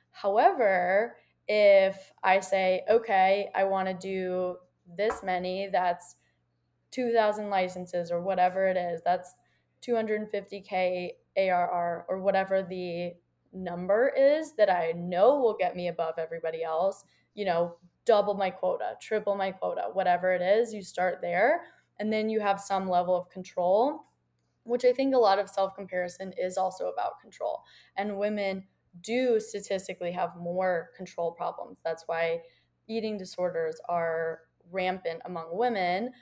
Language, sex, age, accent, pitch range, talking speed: English, female, 20-39, American, 175-215 Hz, 140 wpm